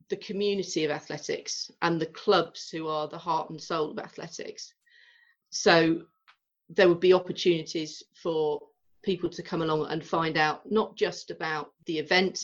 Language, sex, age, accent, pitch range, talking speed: English, female, 40-59, British, 155-200 Hz, 160 wpm